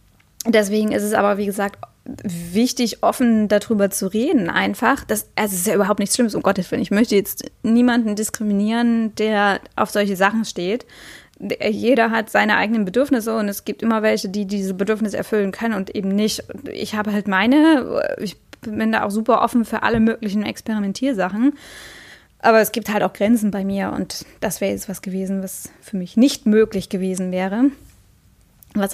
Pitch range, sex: 195-230 Hz, female